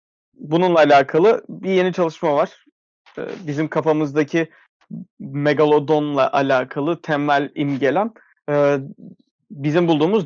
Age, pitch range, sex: 30-49, 140-175 Hz, male